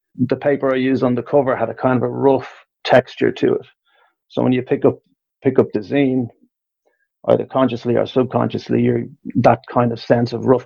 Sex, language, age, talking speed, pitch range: male, English, 30-49, 205 wpm, 115-135 Hz